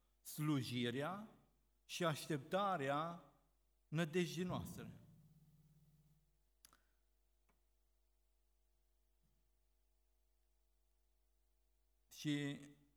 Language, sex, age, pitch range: Romanian, male, 50-69, 115-180 Hz